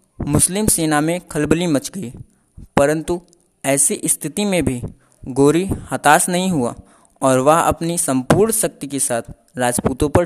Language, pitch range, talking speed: Hindi, 140-175 Hz, 140 wpm